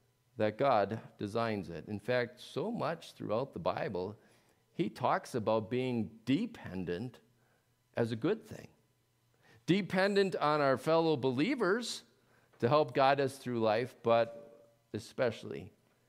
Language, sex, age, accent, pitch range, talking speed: English, male, 50-69, American, 105-135 Hz, 125 wpm